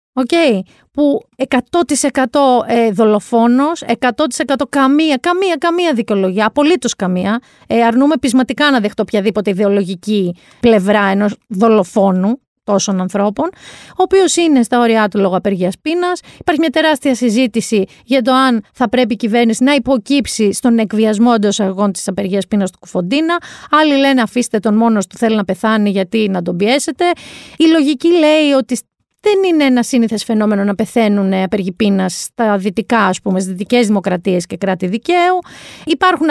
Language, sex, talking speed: Greek, female, 150 wpm